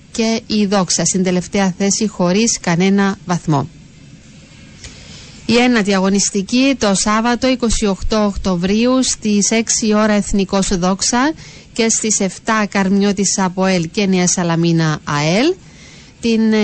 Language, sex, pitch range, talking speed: Greek, female, 180-215 Hz, 110 wpm